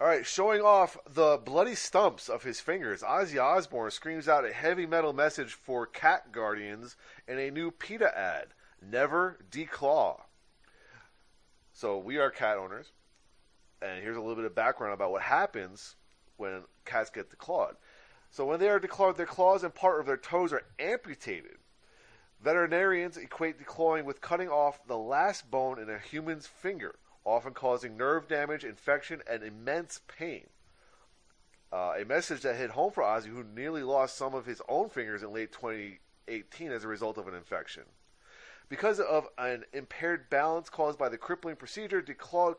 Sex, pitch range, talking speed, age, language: male, 115-170 Hz, 165 wpm, 30-49, English